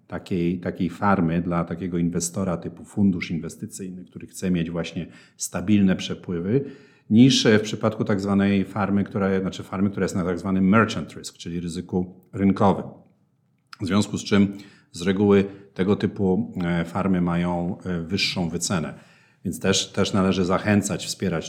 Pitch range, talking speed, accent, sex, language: 85-100 Hz, 150 wpm, native, male, Polish